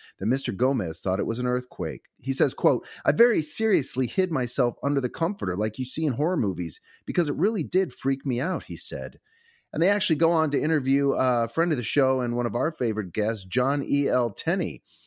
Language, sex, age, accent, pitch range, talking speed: English, male, 30-49, American, 115-160 Hz, 220 wpm